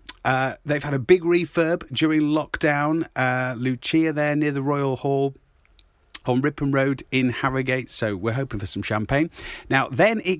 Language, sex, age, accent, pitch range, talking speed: English, male, 40-59, British, 105-140 Hz, 165 wpm